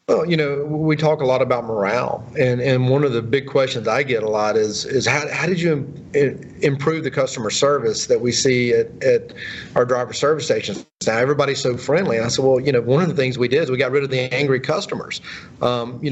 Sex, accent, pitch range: male, American, 120-145 Hz